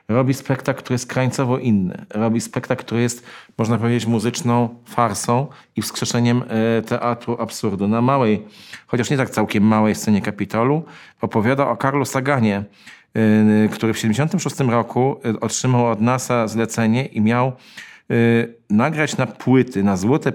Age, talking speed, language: 40-59, 135 wpm, Polish